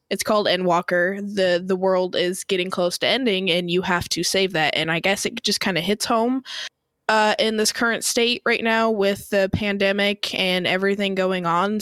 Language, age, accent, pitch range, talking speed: English, 20-39, American, 175-205 Hz, 205 wpm